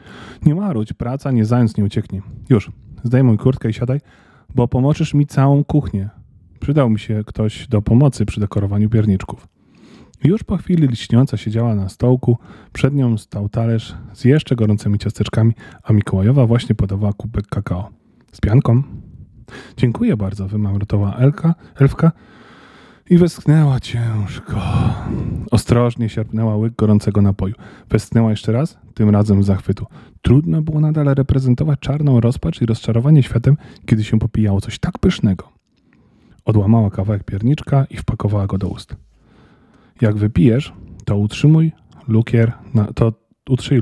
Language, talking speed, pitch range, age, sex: Polish, 135 wpm, 105-130 Hz, 20-39, male